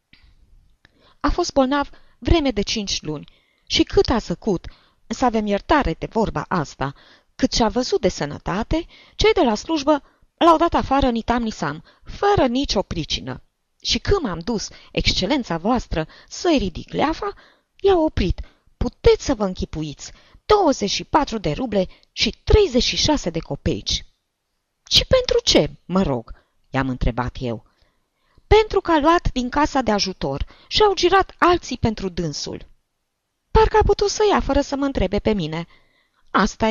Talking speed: 145 wpm